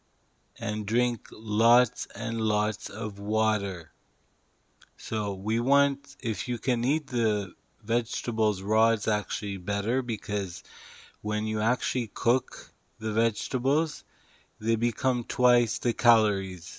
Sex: male